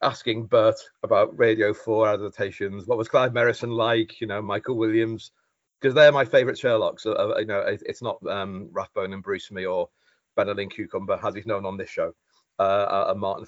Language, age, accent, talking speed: English, 40-59, British, 200 wpm